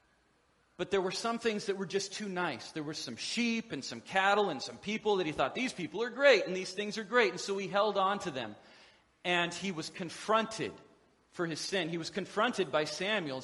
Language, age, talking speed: English, 40-59, 230 wpm